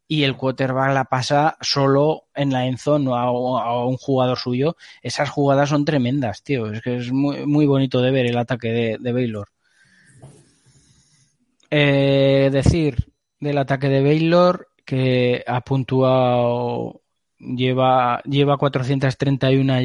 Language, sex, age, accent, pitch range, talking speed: Spanish, male, 20-39, Spanish, 125-140 Hz, 135 wpm